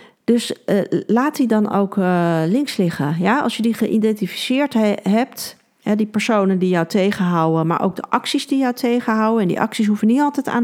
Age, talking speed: 40-59, 205 wpm